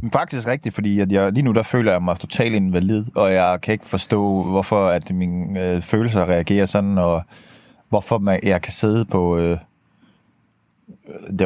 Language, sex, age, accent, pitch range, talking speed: Danish, male, 30-49, native, 95-130 Hz, 185 wpm